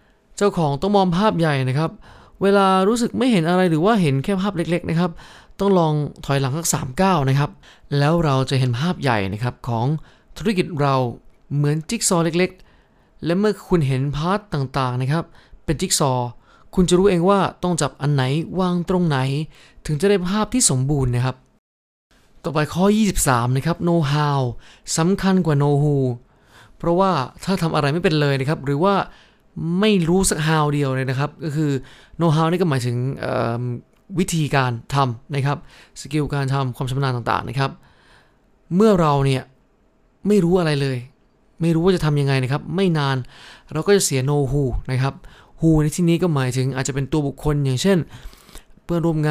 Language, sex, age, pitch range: Thai, male, 20-39, 135-180 Hz